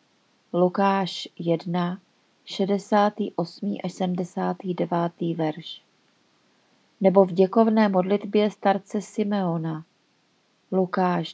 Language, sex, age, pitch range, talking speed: Czech, female, 30-49, 175-200 Hz, 70 wpm